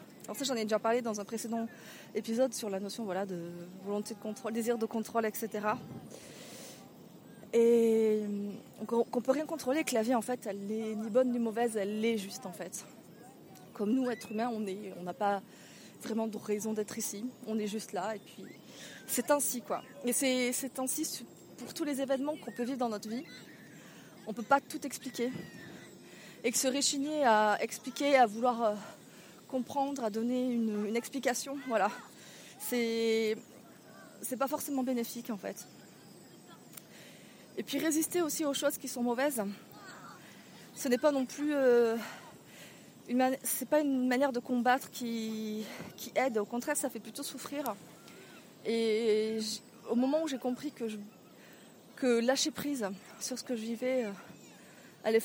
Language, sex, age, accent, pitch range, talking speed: French, female, 20-39, French, 220-260 Hz, 165 wpm